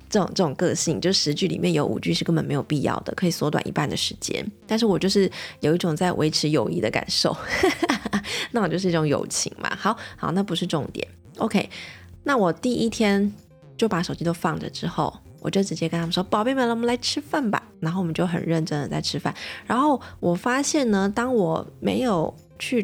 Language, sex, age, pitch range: Chinese, female, 20-39, 165-215 Hz